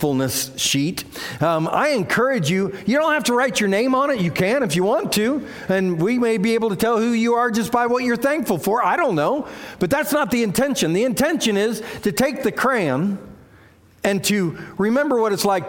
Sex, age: male, 50-69